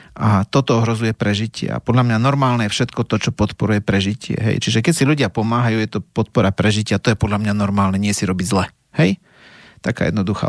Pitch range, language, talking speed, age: 110-135 Hz, Slovak, 205 wpm, 30-49